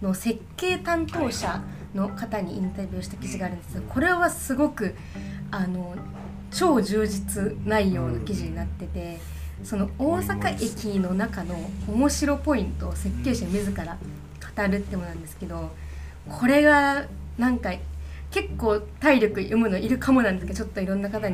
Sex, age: female, 20-39